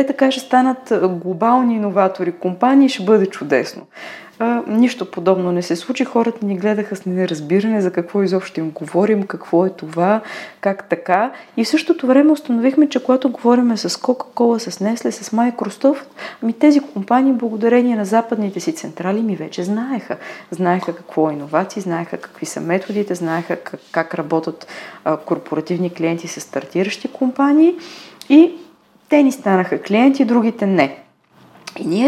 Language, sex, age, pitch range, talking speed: Bulgarian, female, 30-49, 185-250 Hz, 150 wpm